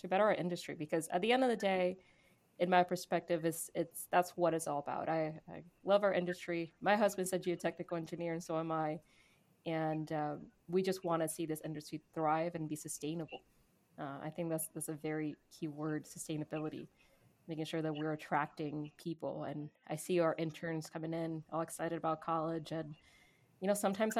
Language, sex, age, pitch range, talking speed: English, female, 20-39, 155-170 Hz, 195 wpm